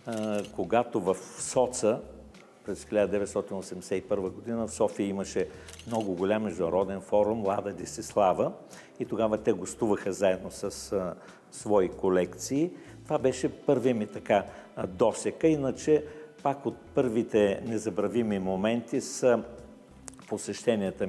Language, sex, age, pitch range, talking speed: Bulgarian, male, 50-69, 100-120 Hz, 110 wpm